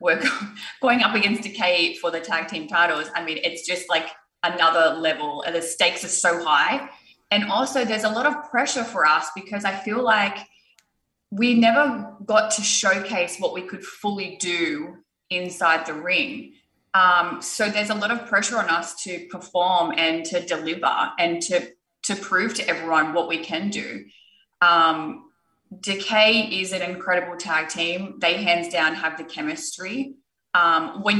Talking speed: 170 wpm